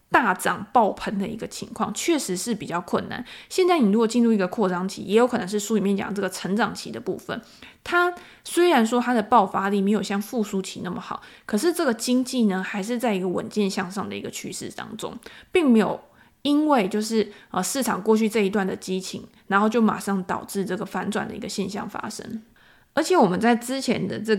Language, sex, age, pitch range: Chinese, female, 20-39, 195-235 Hz